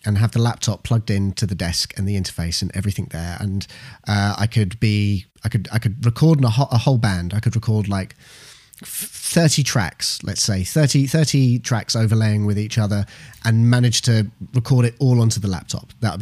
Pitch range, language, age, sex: 100-130 Hz, English, 30-49, male